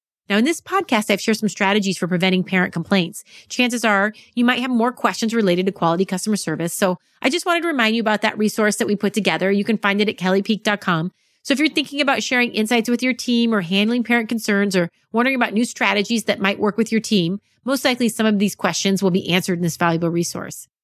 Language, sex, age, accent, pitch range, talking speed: English, female, 30-49, American, 185-235 Hz, 235 wpm